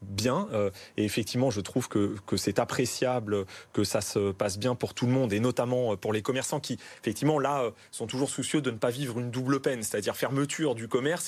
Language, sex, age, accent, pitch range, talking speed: French, male, 30-49, French, 115-145 Hz, 220 wpm